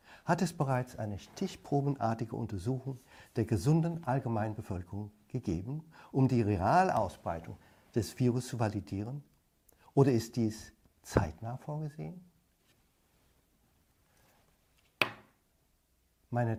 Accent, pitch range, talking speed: German, 105-150 Hz, 85 wpm